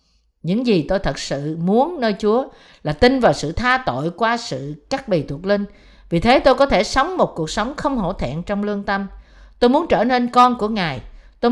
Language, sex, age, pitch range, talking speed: Vietnamese, female, 50-69, 170-250 Hz, 225 wpm